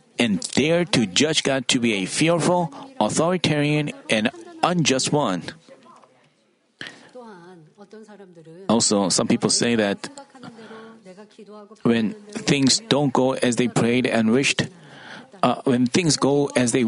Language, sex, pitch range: Korean, male, 135-210 Hz